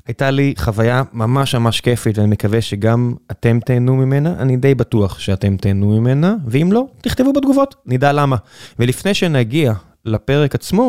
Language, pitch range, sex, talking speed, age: Hebrew, 110-150 Hz, male, 155 wpm, 20-39